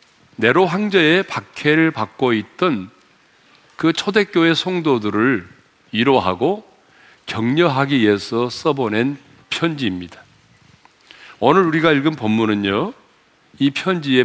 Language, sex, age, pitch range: Korean, male, 40-59, 110-170 Hz